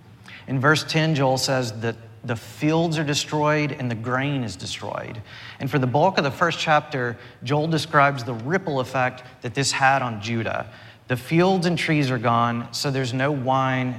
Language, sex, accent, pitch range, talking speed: English, male, American, 115-145 Hz, 185 wpm